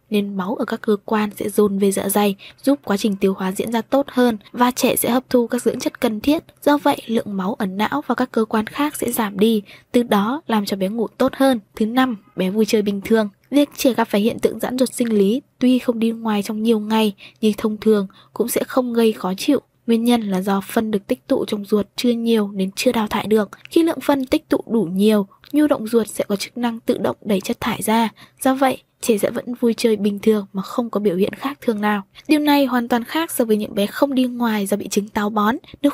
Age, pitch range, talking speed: 10-29, 210-260 Hz, 260 wpm